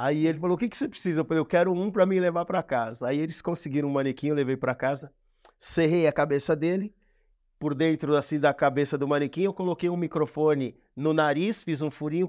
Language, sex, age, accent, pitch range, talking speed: Portuguese, male, 50-69, Brazilian, 155-205 Hz, 230 wpm